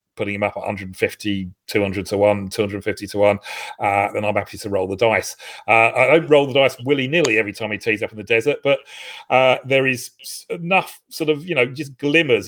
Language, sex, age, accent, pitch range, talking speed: English, male, 40-59, British, 105-135 Hz, 215 wpm